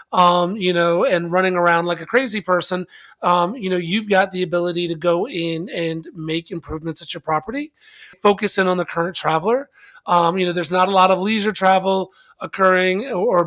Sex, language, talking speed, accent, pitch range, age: male, English, 195 wpm, American, 170-190 Hz, 30-49